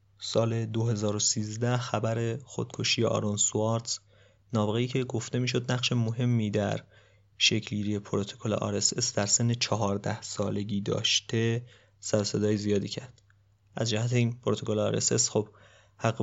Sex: male